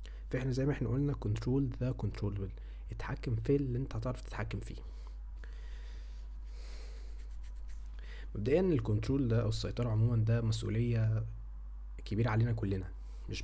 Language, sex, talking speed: Arabic, male, 125 wpm